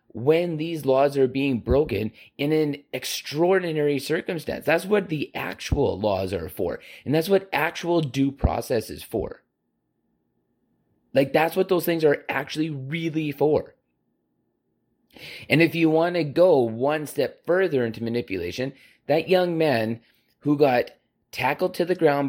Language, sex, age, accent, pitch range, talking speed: English, male, 30-49, American, 125-160 Hz, 145 wpm